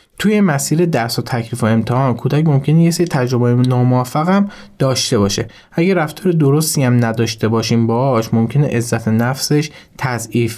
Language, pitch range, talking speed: Persian, 115-140 Hz, 150 wpm